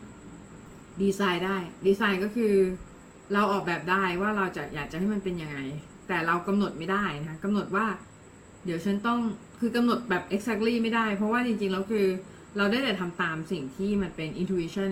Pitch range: 165-205 Hz